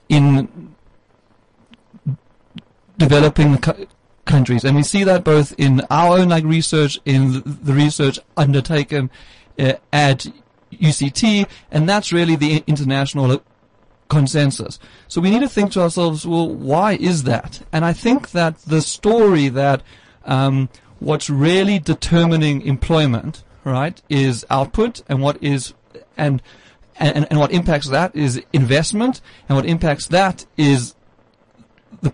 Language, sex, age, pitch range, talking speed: English, male, 40-59, 140-170 Hz, 130 wpm